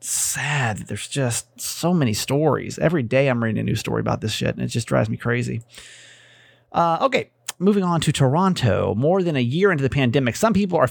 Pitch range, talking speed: 125-175 Hz, 215 wpm